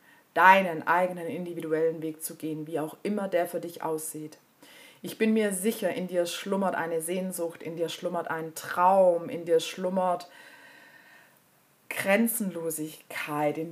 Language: German